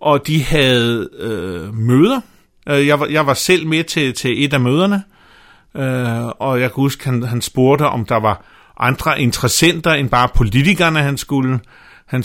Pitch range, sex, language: 120-155 Hz, male, Danish